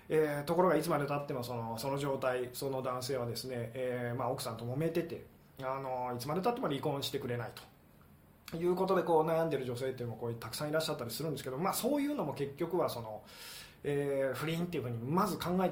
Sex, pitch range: male, 130-195 Hz